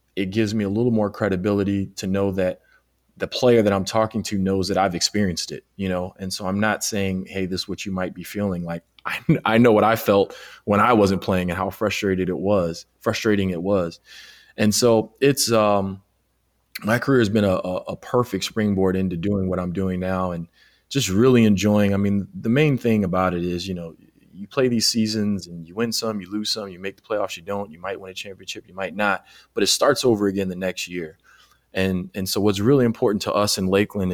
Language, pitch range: English, 95-105 Hz